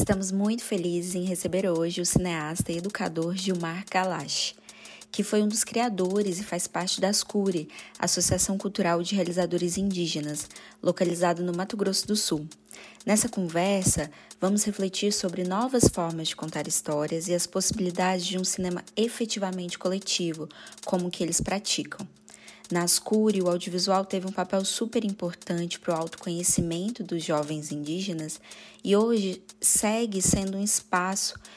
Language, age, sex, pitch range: Portuguese, 20-39, female, 175-200 Hz